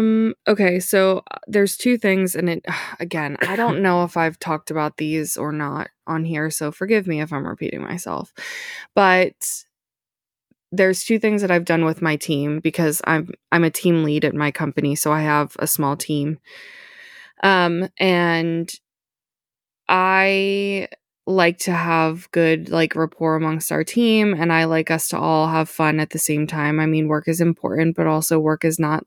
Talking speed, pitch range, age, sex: 180 wpm, 155-180 Hz, 20-39, female